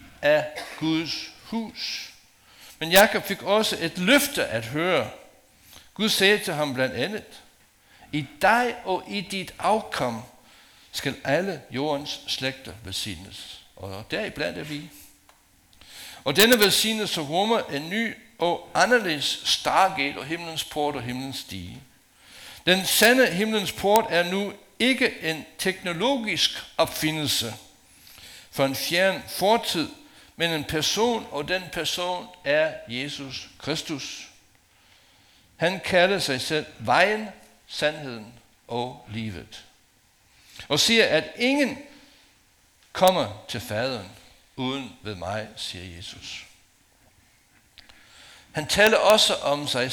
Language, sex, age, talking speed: Danish, male, 60-79, 115 wpm